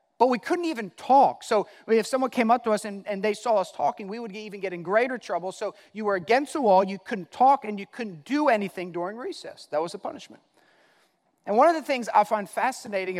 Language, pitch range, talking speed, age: English, 185-235 Hz, 240 wpm, 40-59